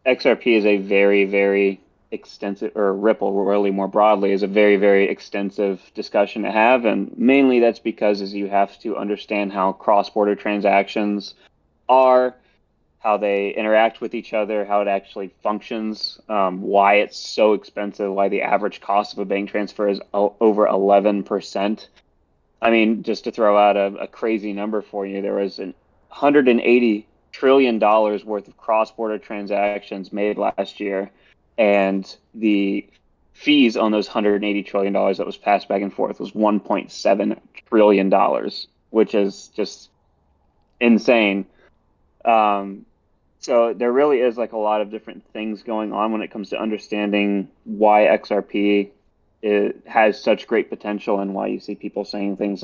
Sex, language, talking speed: male, English, 155 wpm